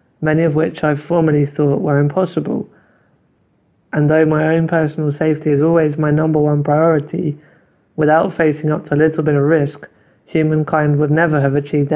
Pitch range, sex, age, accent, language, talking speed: 145-160 Hz, male, 20-39, British, English, 170 wpm